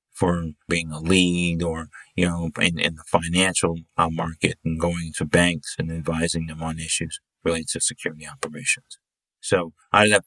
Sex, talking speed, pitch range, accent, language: male, 175 wpm, 80-95 Hz, American, English